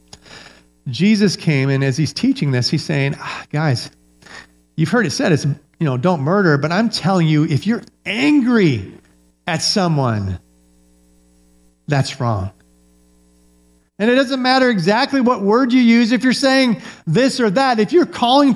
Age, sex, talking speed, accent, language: 50-69, male, 155 wpm, American, English